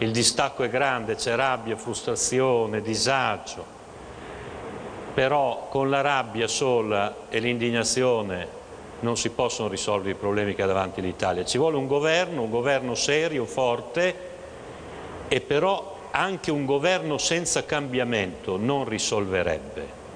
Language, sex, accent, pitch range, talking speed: Italian, male, native, 115-155 Hz, 125 wpm